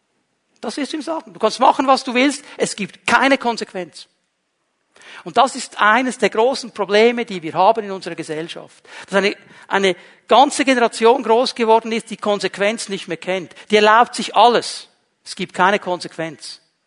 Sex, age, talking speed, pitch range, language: male, 60-79, 175 wpm, 160-215 Hz, German